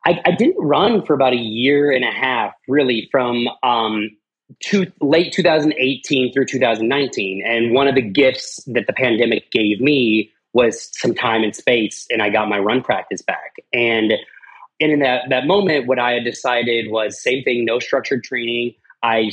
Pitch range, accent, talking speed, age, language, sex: 120-150 Hz, American, 180 wpm, 30-49, English, male